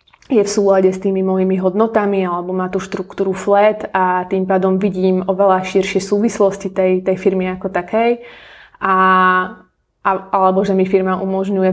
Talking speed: 160 wpm